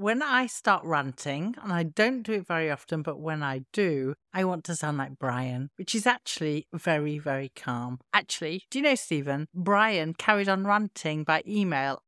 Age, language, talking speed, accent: 50-69, English, 190 wpm, British